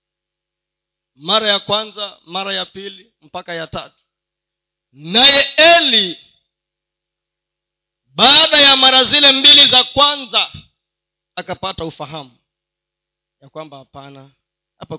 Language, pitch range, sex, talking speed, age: Swahili, 175-260 Hz, male, 95 wpm, 40-59